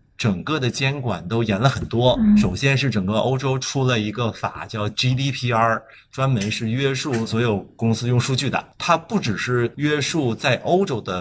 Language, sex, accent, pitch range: Chinese, male, native, 105-125 Hz